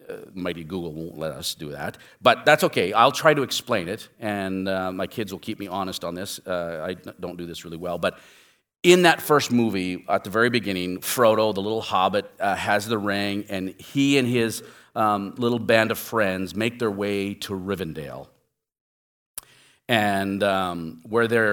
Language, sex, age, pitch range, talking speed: English, male, 40-59, 95-120 Hz, 185 wpm